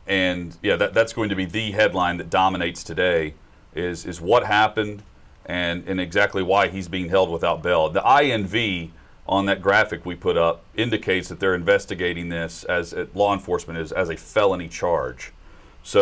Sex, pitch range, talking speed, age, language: male, 85-120 Hz, 180 wpm, 40-59, English